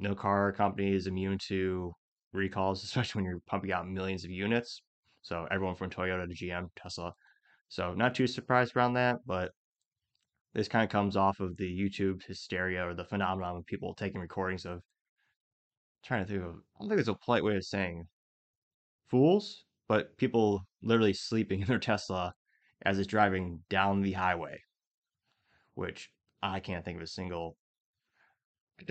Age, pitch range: 20-39, 95-110 Hz